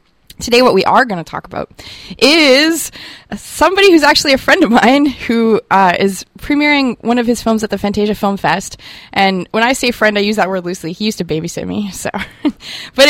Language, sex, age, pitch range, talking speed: English, female, 20-39, 180-235 Hz, 210 wpm